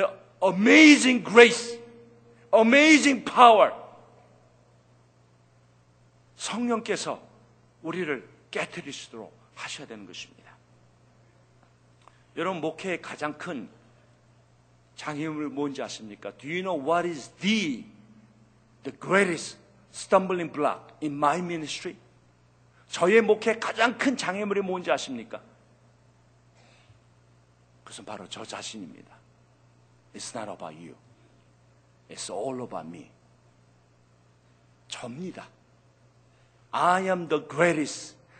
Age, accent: 50-69, native